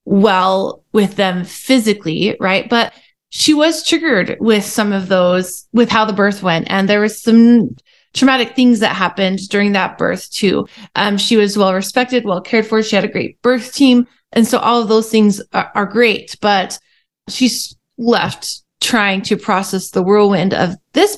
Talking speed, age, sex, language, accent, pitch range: 180 wpm, 20-39, female, English, American, 195-240 Hz